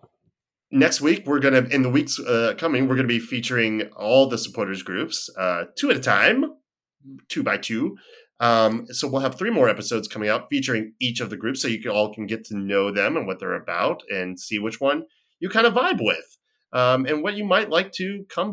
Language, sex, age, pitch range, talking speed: English, male, 30-49, 110-175 Hz, 235 wpm